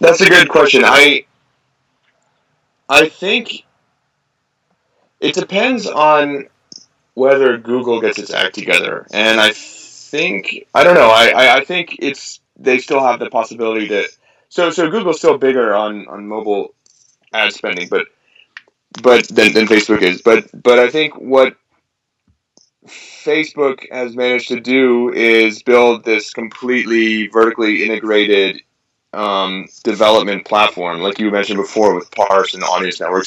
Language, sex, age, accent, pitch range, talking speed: English, male, 30-49, American, 105-125 Hz, 140 wpm